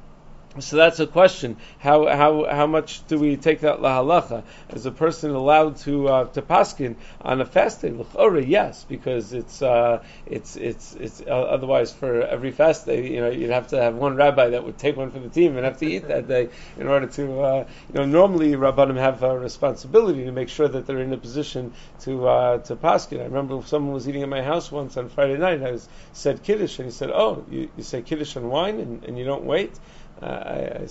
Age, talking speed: 30-49, 225 wpm